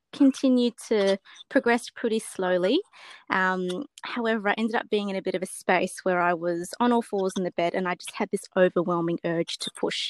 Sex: female